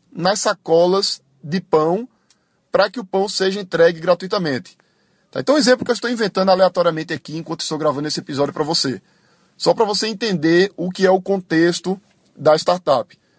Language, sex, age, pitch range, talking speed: Portuguese, male, 20-39, 165-205 Hz, 170 wpm